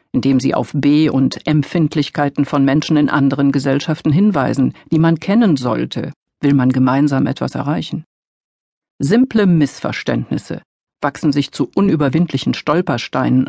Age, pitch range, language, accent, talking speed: 50-69, 140-175 Hz, German, German, 125 wpm